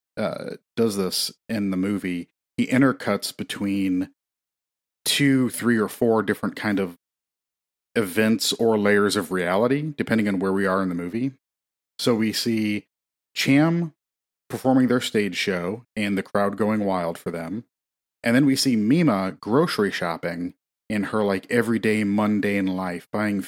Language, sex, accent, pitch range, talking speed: English, male, American, 95-110 Hz, 150 wpm